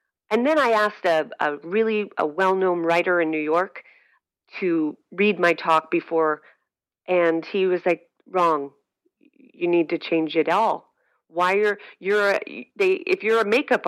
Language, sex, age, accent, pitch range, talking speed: English, female, 40-59, American, 165-220 Hz, 170 wpm